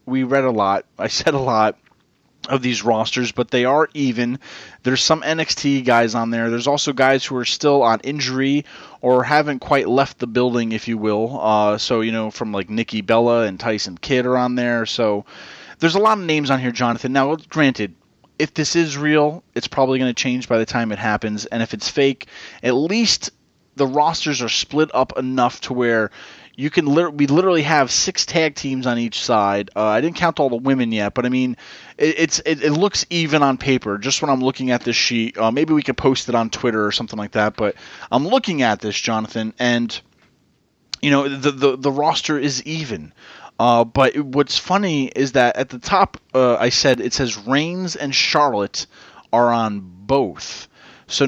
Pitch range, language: 115-145 Hz, English